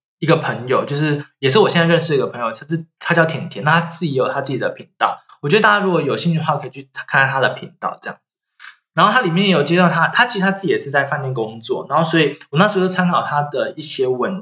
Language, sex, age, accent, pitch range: Chinese, male, 20-39, native, 140-185 Hz